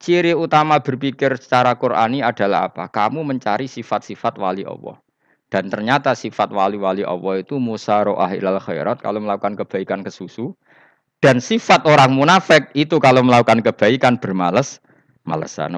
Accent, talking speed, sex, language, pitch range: native, 135 wpm, male, Indonesian, 95-125 Hz